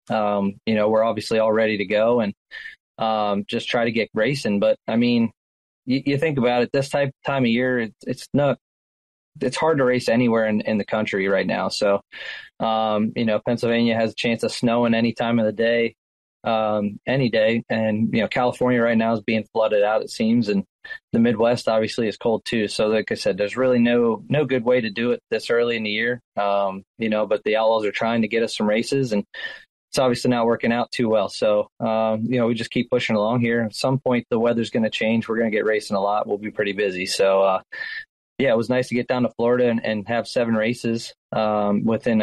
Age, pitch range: 20-39, 110-120 Hz